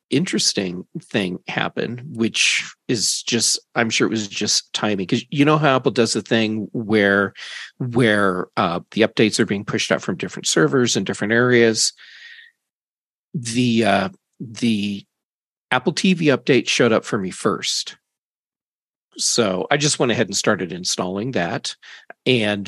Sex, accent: male, American